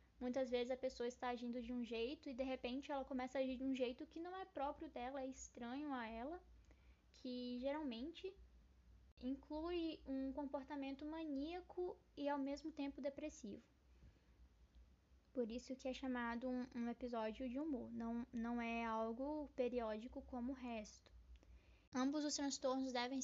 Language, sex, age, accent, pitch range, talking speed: Portuguese, female, 10-29, Brazilian, 235-275 Hz, 160 wpm